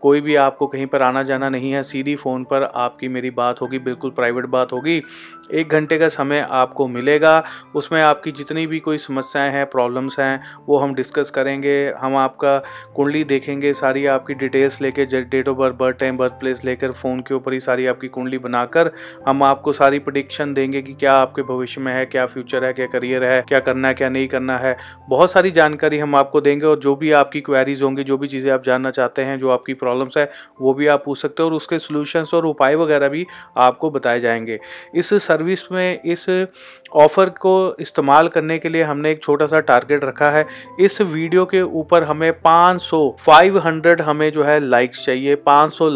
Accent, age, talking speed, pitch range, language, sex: native, 30-49, 205 wpm, 130-155 Hz, Hindi, male